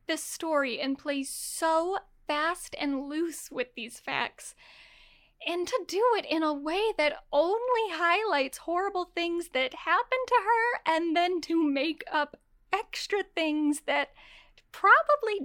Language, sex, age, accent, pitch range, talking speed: English, female, 10-29, American, 300-370 Hz, 140 wpm